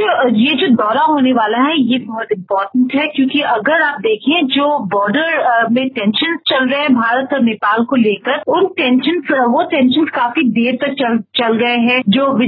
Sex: female